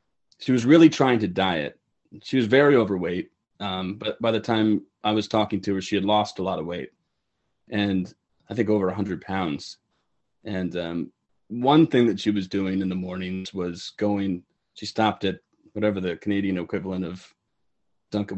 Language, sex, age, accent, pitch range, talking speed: English, male, 30-49, American, 95-115 Hz, 180 wpm